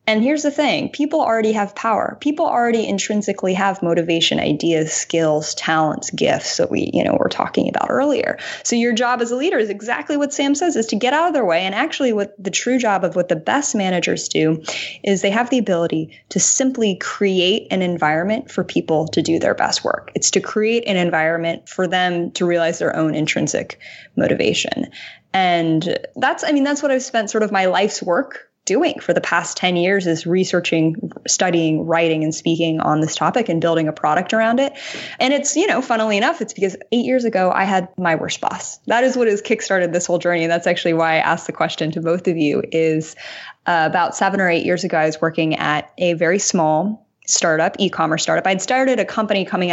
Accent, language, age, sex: American, English, 20-39, female